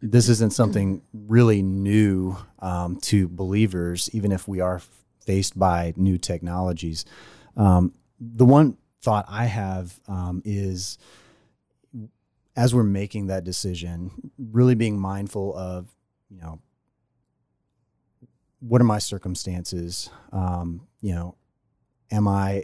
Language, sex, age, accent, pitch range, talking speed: English, male, 30-49, American, 90-110 Hz, 115 wpm